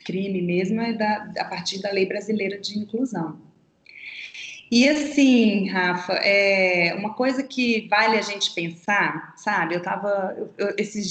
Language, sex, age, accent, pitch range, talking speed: Portuguese, female, 20-39, Brazilian, 195-245 Hz, 140 wpm